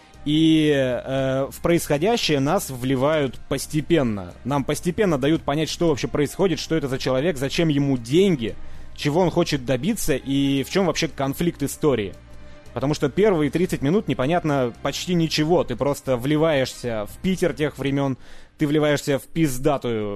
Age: 20-39